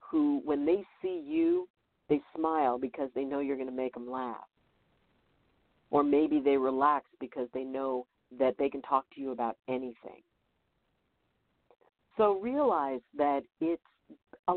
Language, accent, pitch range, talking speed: English, American, 140-195 Hz, 150 wpm